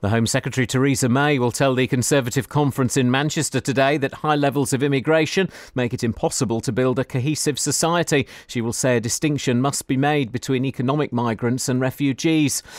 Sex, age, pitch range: male, 40-59, 130-165 Hz